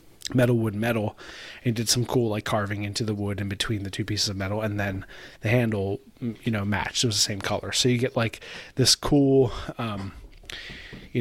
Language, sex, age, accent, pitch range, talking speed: English, male, 30-49, American, 105-120 Hz, 210 wpm